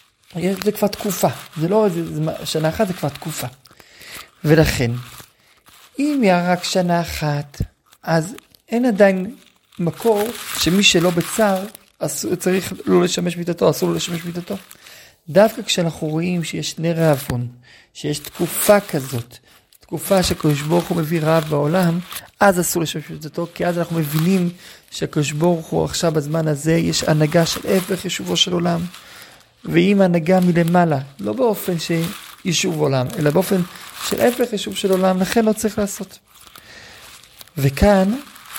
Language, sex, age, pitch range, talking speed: Hebrew, male, 40-59, 155-195 Hz, 135 wpm